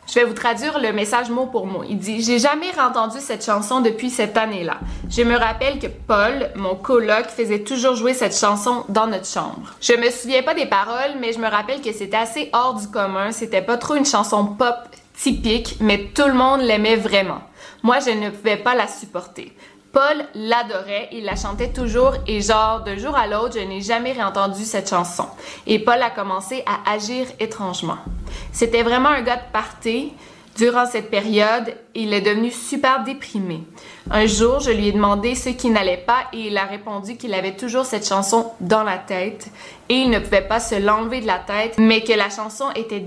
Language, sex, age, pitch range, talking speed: French, female, 20-39, 205-245 Hz, 205 wpm